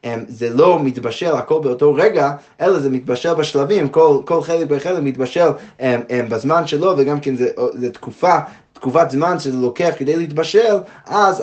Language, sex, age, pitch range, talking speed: Hebrew, male, 20-39, 130-170 Hz, 165 wpm